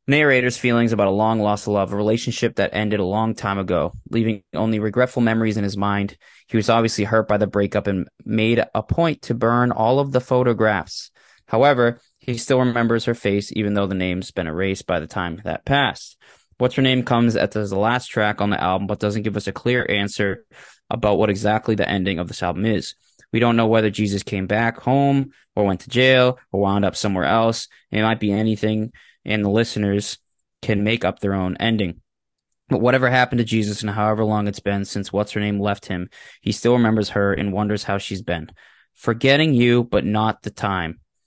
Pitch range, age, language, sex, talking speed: 100-115 Hz, 20-39, English, male, 210 wpm